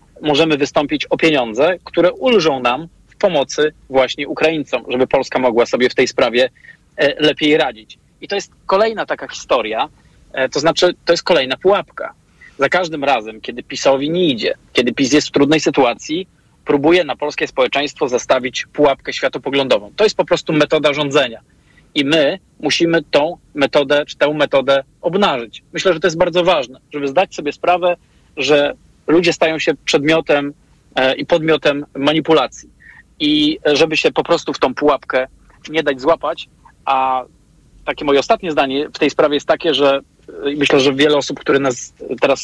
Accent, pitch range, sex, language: native, 140-165 Hz, male, Polish